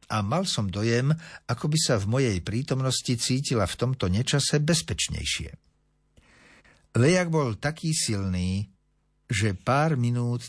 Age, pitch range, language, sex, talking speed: 60-79, 95-130 Hz, Slovak, male, 125 wpm